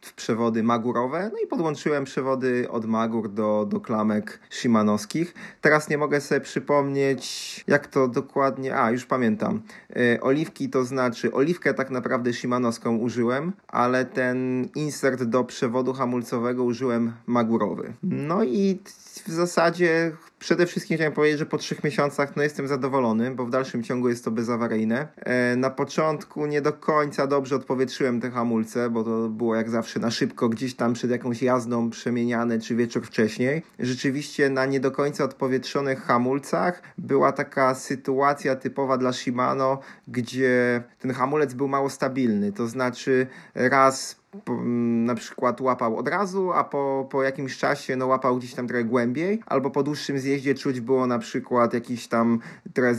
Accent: native